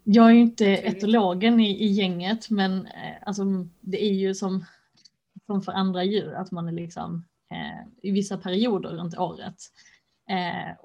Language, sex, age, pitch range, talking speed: Swedish, female, 20-39, 175-195 Hz, 160 wpm